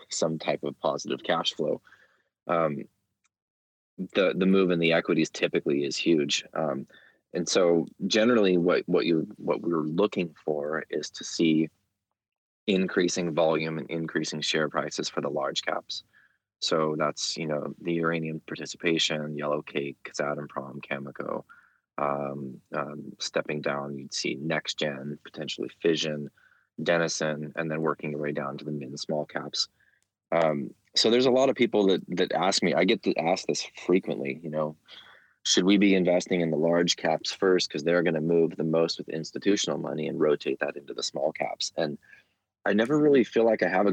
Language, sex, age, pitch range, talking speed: English, male, 20-39, 75-90 Hz, 175 wpm